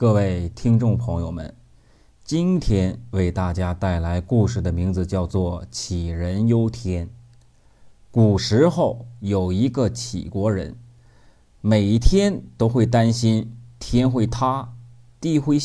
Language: Chinese